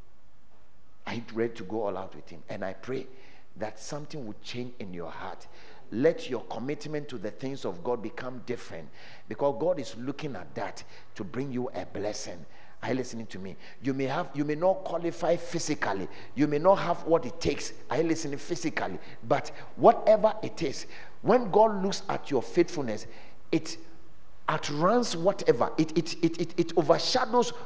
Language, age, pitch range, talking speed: English, 50-69, 135-180 Hz, 175 wpm